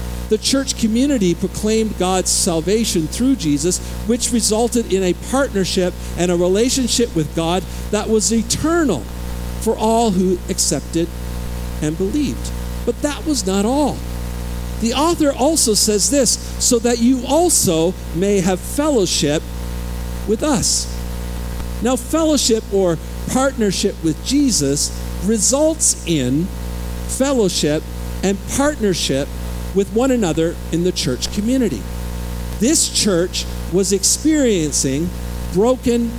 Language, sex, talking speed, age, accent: English, male, 115 wpm, 50-69, American